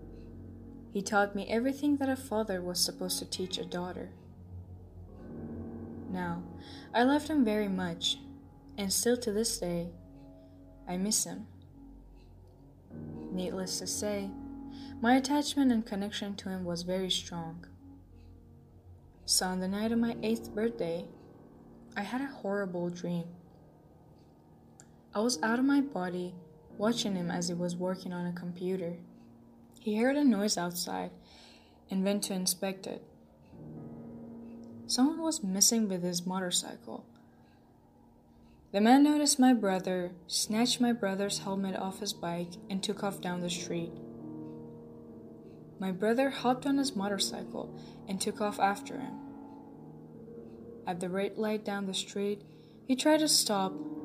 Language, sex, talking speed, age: English, female, 135 wpm, 10-29